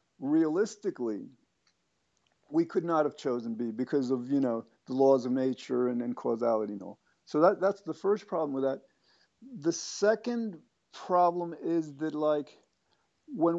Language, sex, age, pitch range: English, male, 50-69, 145-180 Hz